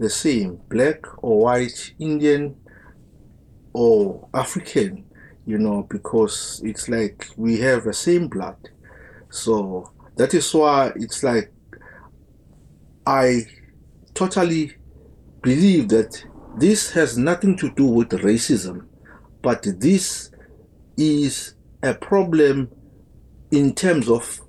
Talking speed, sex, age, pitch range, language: 105 wpm, male, 50-69, 110-165 Hz, English